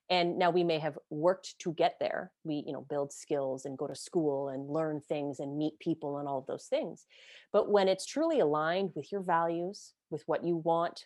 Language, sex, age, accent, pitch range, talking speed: English, female, 30-49, American, 165-215 Hz, 220 wpm